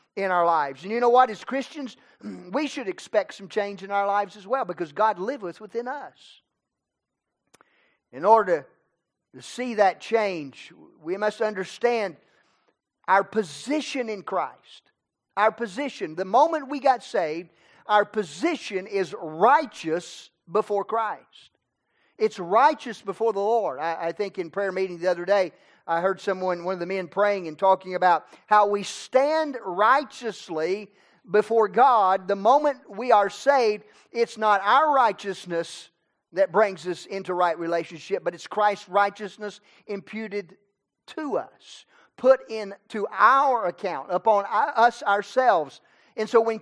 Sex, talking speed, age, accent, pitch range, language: male, 145 wpm, 40-59, American, 190-240 Hz, English